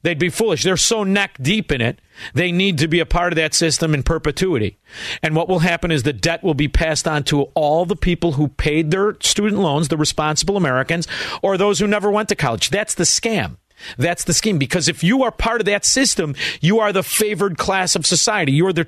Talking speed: 235 wpm